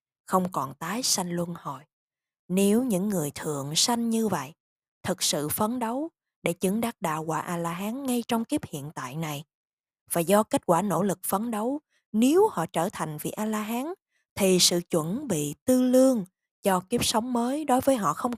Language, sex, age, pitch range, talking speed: Vietnamese, female, 20-39, 170-250 Hz, 185 wpm